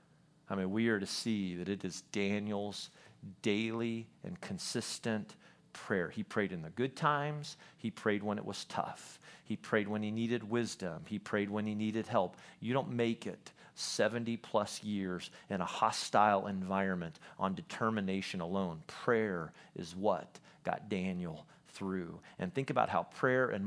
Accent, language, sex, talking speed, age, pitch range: American, English, male, 160 wpm, 40-59, 100-130 Hz